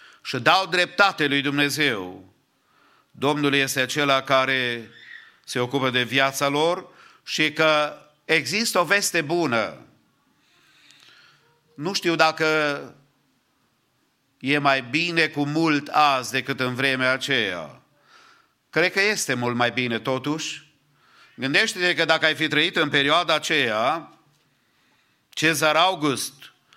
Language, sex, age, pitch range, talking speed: English, male, 50-69, 140-165 Hz, 115 wpm